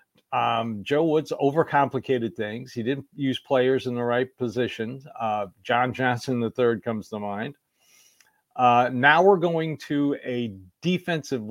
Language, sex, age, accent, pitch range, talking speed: English, male, 50-69, American, 120-155 Hz, 140 wpm